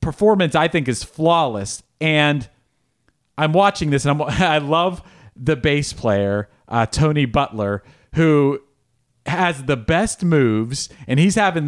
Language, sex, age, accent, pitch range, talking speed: English, male, 40-59, American, 130-170 Hz, 135 wpm